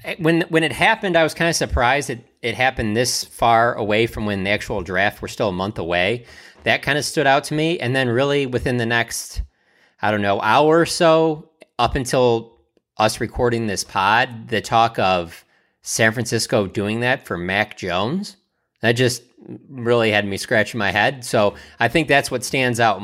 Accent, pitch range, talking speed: American, 105-135 Hz, 200 wpm